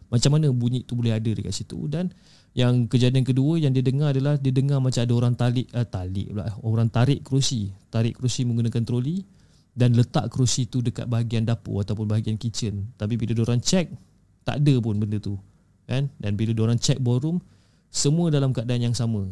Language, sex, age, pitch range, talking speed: Malay, male, 20-39, 110-135 Hz, 185 wpm